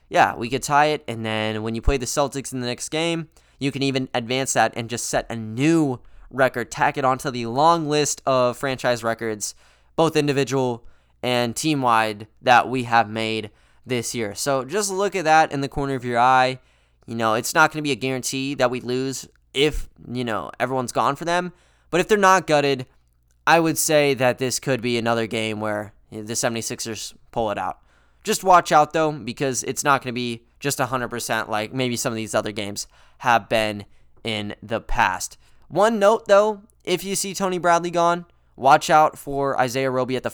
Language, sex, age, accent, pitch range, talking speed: English, male, 10-29, American, 120-150 Hz, 205 wpm